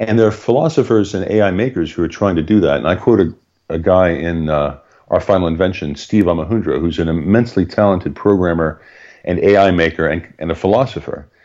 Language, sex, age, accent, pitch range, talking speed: English, male, 40-59, American, 85-105 Hz, 195 wpm